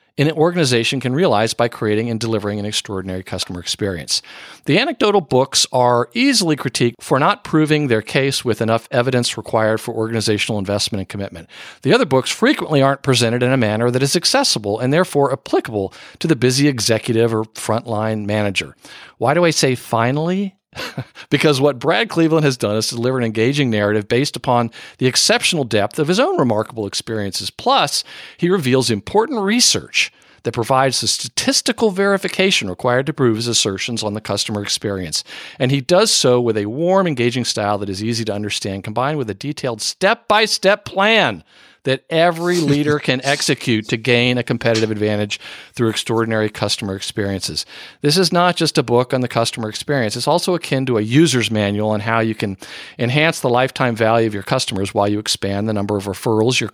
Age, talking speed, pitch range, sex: 50-69, 180 wpm, 110-145 Hz, male